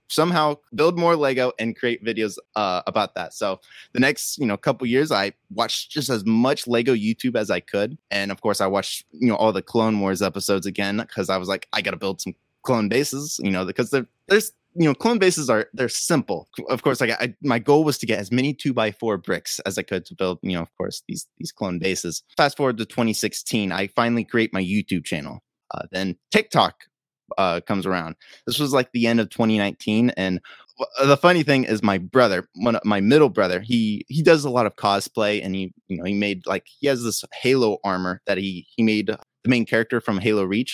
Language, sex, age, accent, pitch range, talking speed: English, male, 20-39, American, 100-135 Hz, 230 wpm